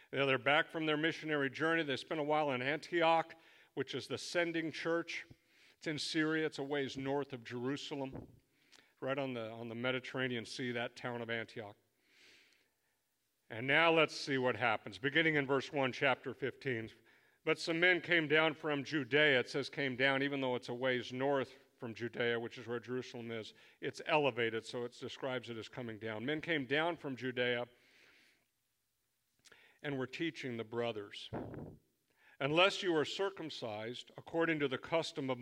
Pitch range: 120-150 Hz